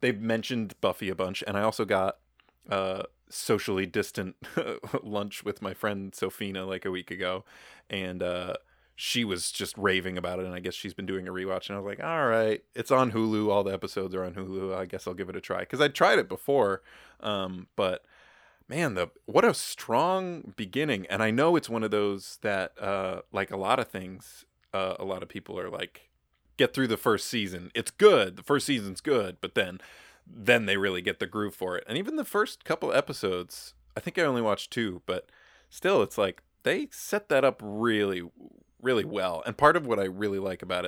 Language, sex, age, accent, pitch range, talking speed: English, male, 20-39, American, 95-120 Hz, 215 wpm